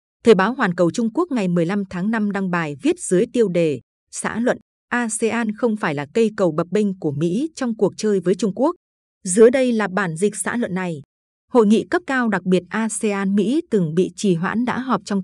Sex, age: female, 20-39